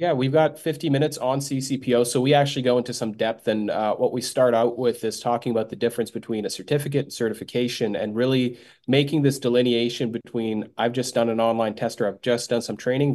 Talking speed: 220 wpm